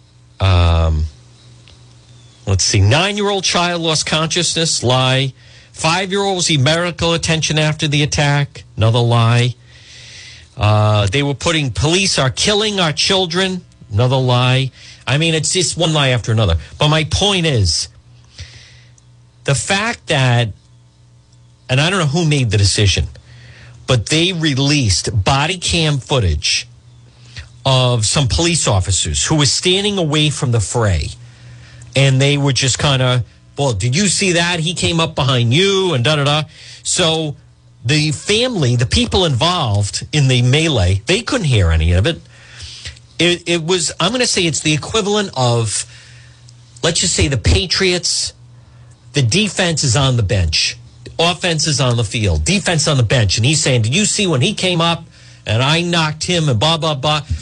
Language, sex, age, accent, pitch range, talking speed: English, male, 50-69, American, 120-160 Hz, 155 wpm